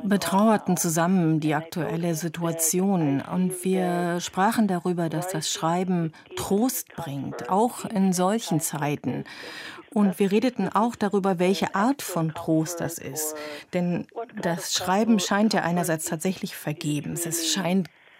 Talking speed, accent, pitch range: 130 wpm, German, 165-205 Hz